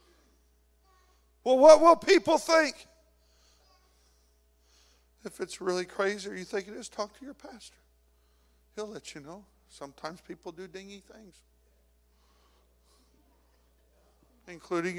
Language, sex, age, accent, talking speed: English, male, 50-69, American, 110 wpm